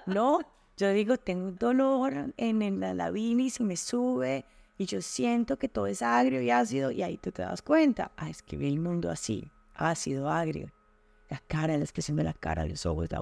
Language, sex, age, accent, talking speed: Spanish, female, 30-49, Colombian, 215 wpm